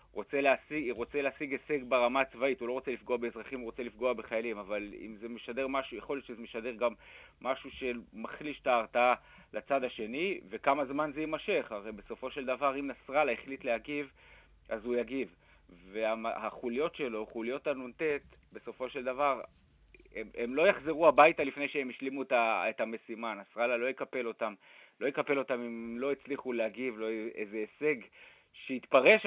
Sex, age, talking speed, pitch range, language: male, 30-49, 165 wpm, 115-145 Hz, Hebrew